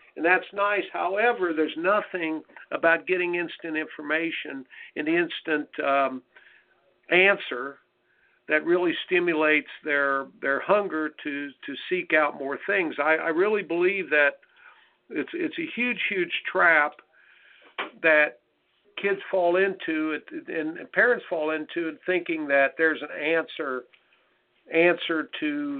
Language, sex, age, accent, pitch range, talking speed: English, male, 60-79, American, 150-180 Hz, 125 wpm